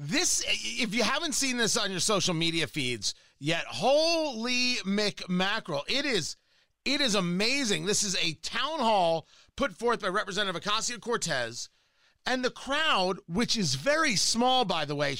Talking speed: 160 wpm